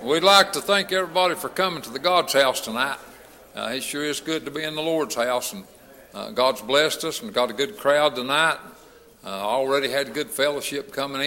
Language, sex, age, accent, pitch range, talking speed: English, male, 60-79, American, 135-170 Hz, 220 wpm